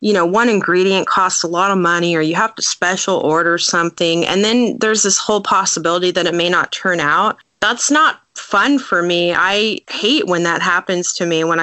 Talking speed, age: 210 wpm, 20-39